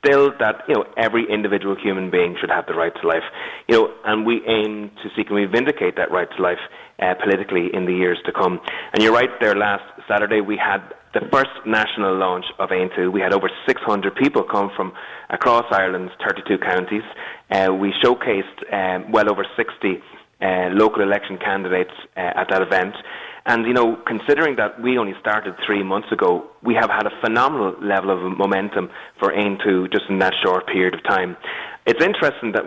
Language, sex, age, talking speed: English, male, 30-49, 200 wpm